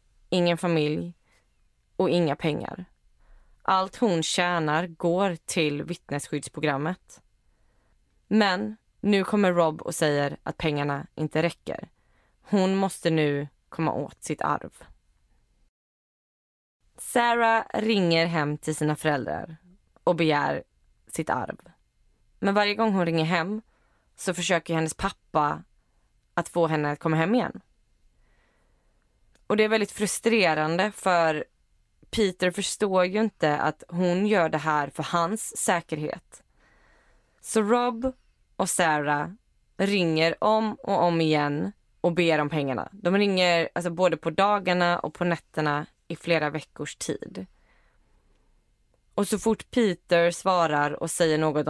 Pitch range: 150-190 Hz